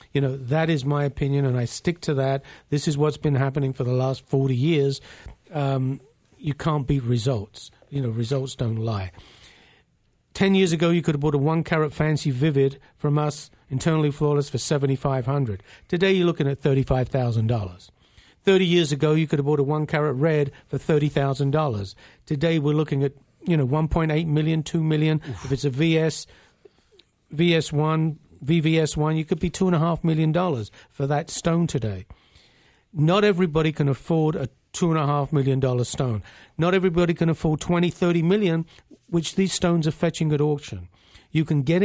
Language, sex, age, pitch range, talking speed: English, male, 50-69, 135-165 Hz, 165 wpm